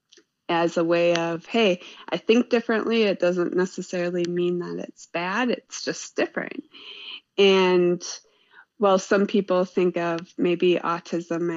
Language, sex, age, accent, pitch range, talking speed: English, female, 20-39, American, 175-210 Hz, 135 wpm